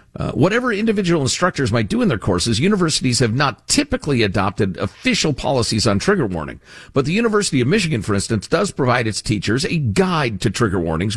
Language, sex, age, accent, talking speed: English, male, 50-69, American, 190 wpm